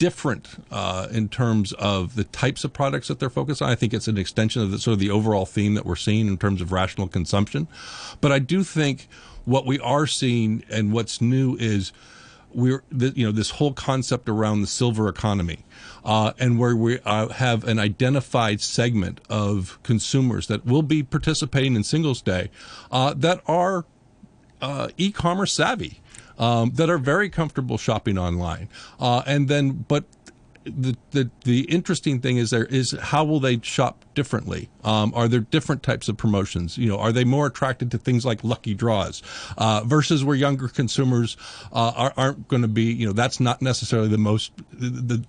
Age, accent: 50-69, American